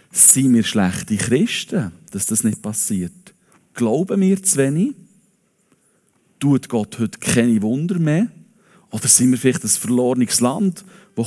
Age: 40-59